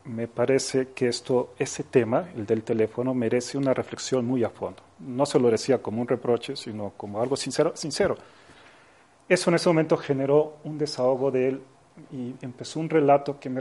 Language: Spanish